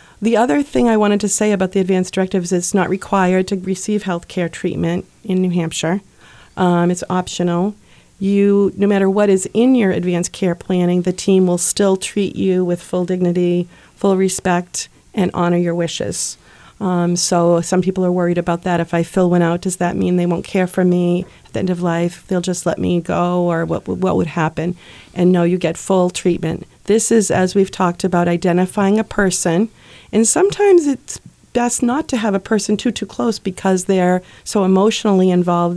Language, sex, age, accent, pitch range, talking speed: English, female, 40-59, American, 175-200 Hz, 200 wpm